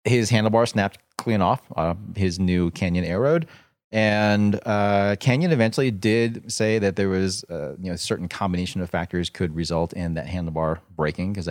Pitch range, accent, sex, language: 90-115 Hz, American, male, English